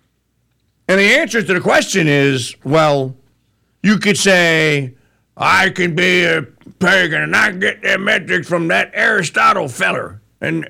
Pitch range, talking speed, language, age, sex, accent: 105-155 Hz, 150 wpm, English, 60-79, male, American